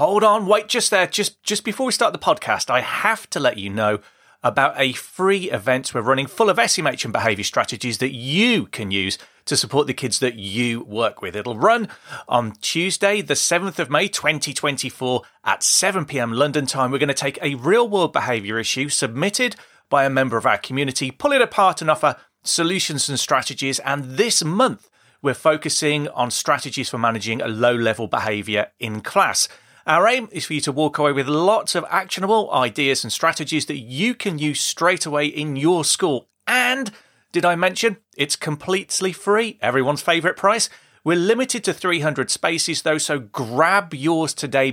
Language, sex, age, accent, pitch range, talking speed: English, male, 30-49, British, 125-180 Hz, 185 wpm